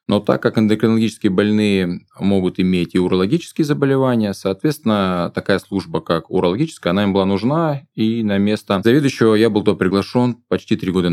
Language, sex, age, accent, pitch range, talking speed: Russian, male, 20-39, native, 90-120 Hz, 160 wpm